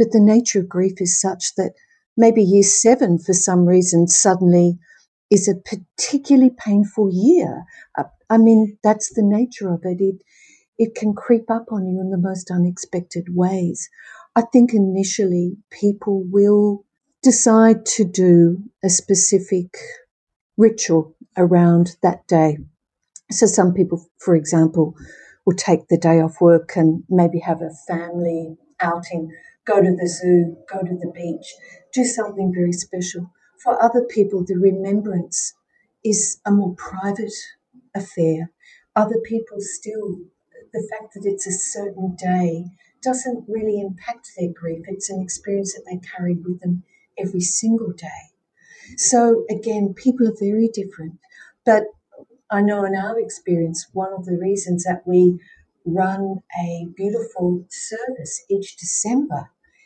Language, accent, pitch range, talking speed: English, Australian, 175-220 Hz, 145 wpm